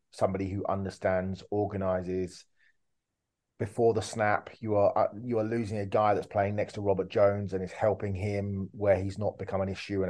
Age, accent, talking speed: 30-49, British, 185 wpm